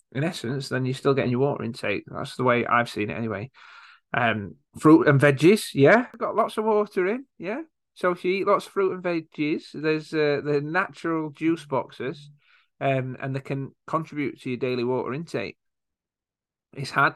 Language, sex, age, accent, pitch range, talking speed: English, male, 30-49, British, 120-150 Hz, 190 wpm